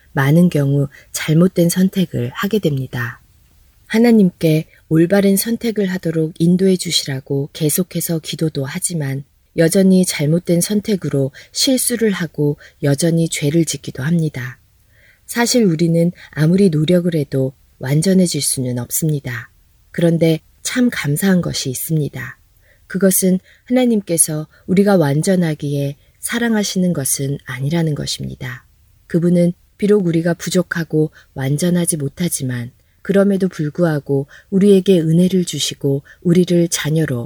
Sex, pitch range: female, 135-180 Hz